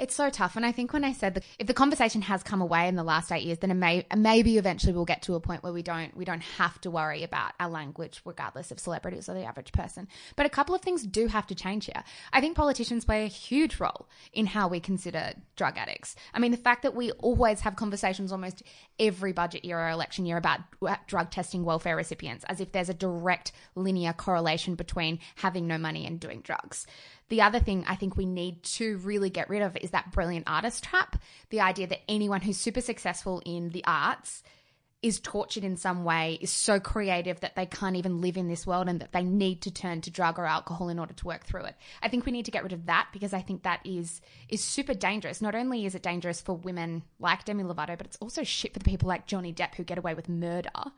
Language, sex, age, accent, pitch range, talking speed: English, female, 20-39, Australian, 175-215 Hz, 245 wpm